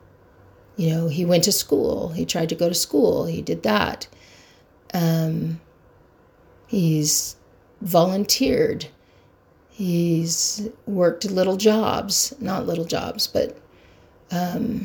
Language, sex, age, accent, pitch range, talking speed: English, female, 40-59, American, 155-180 Hz, 110 wpm